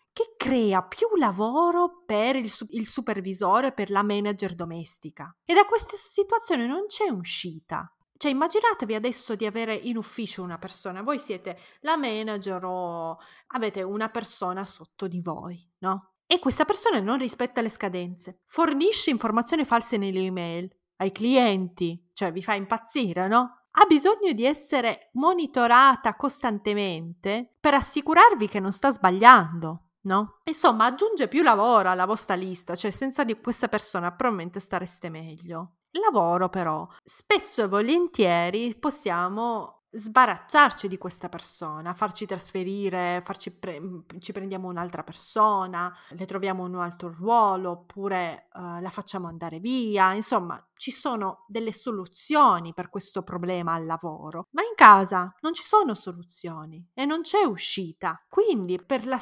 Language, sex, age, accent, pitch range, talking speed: Italian, female, 30-49, native, 180-255 Hz, 140 wpm